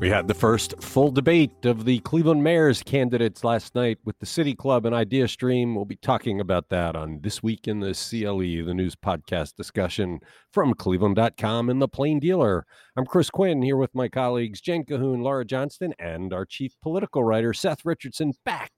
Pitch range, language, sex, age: 110-160 Hz, English, male, 50-69